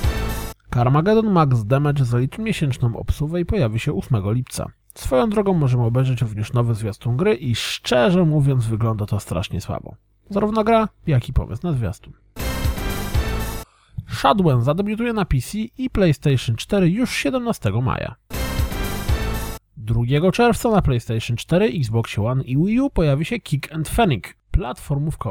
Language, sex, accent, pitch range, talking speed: Polish, male, native, 115-190 Hz, 140 wpm